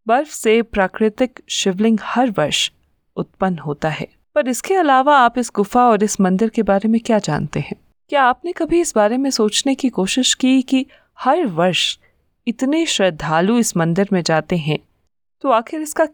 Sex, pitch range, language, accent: female, 185-245 Hz, Hindi, native